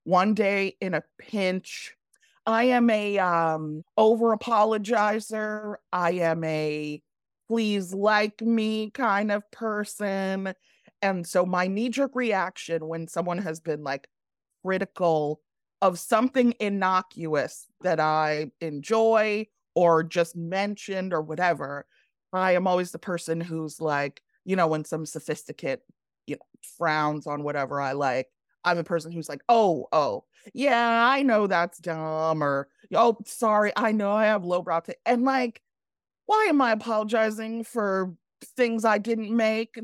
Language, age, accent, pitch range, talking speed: English, 30-49, American, 175-230 Hz, 135 wpm